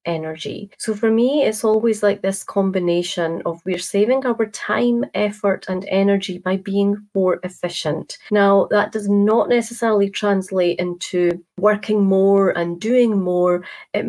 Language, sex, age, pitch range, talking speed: English, female, 30-49, 180-215 Hz, 145 wpm